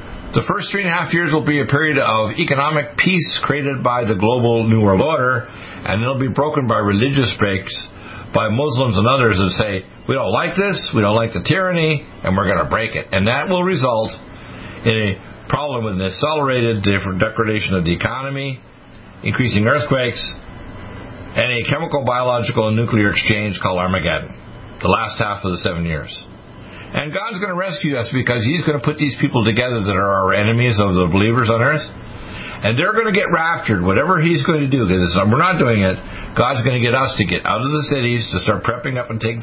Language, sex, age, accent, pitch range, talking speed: English, male, 60-79, American, 105-145 Hz, 210 wpm